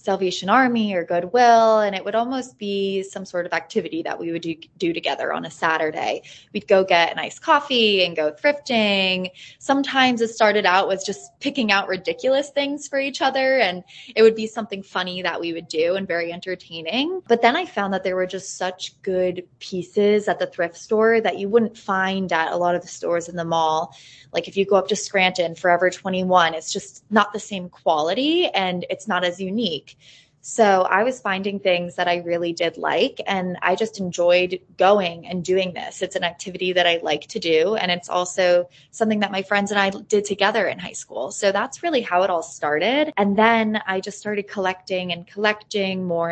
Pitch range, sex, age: 175-215 Hz, female, 20-39